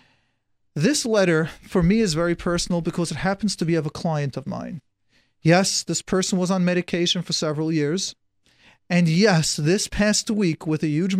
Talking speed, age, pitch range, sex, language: 180 wpm, 40-59, 160-195 Hz, male, English